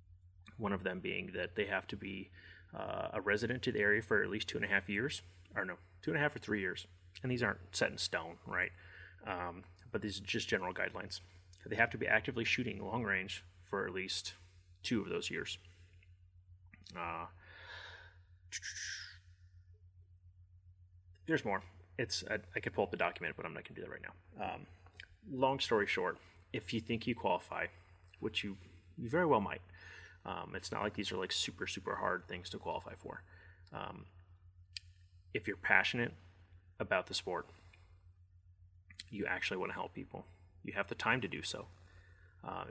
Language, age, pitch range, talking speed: English, 30-49, 90-95 Hz, 185 wpm